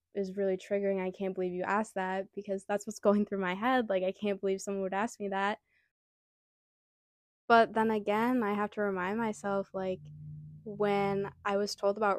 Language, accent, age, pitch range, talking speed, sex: English, American, 20-39, 185-205 Hz, 190 wpm, female